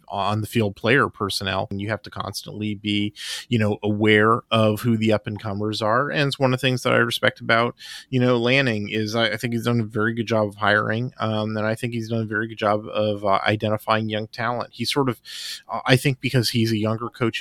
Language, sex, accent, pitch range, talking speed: English, male, American, 100-115 Hz, 240 wpm